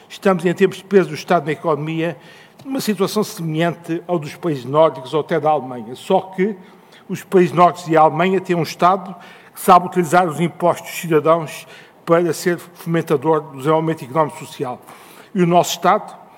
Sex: male